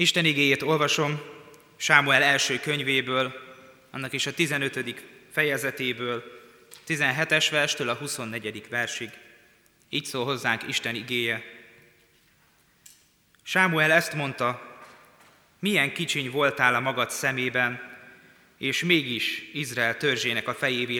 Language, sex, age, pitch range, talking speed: Hungarian, male, 20-39, 120-150 Hz, 105 wpm